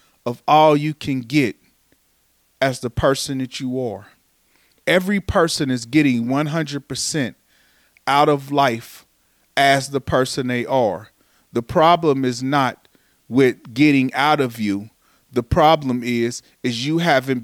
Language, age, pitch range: English, 40-59, 125-155 Hz